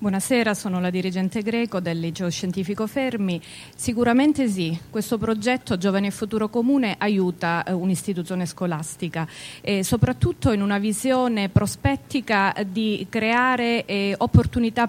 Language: Italian